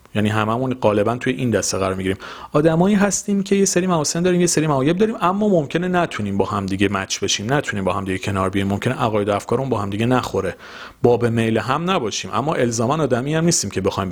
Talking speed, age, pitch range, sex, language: 225 wpm, 40-59, 105-165 Hz, male, Persian